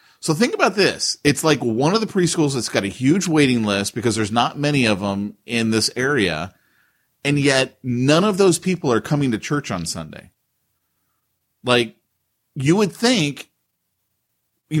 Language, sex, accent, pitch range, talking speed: English, male, American, 120-155 Hz, 170 wpm